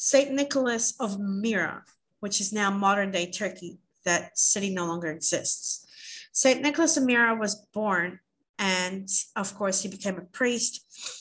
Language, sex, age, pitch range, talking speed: English, female, 40-59, 190-230 Hz, 145 wpm